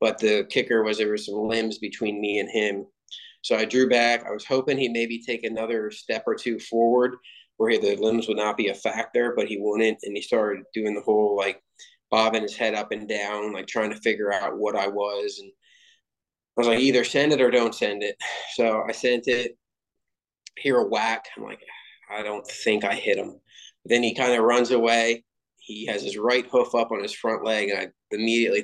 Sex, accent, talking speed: male, American, 220 wpm